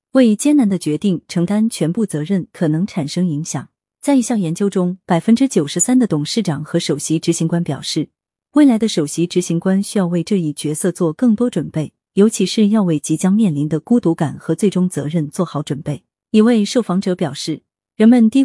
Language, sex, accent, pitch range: Chinese, female, native, 155-210 Hz